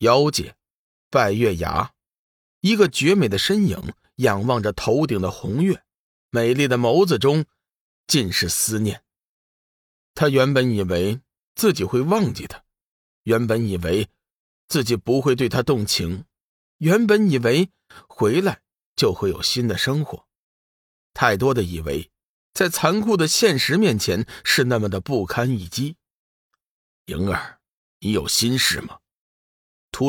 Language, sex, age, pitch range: Chinese, male, 50-69, 100-150 Hz